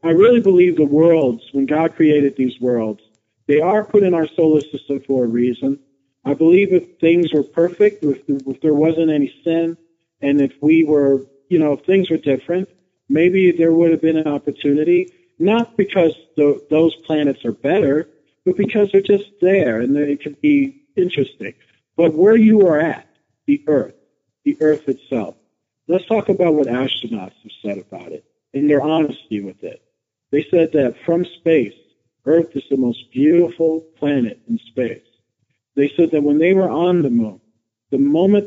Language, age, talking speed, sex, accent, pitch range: English, 50-69, 175 wpm, male, American, 135-175 Hz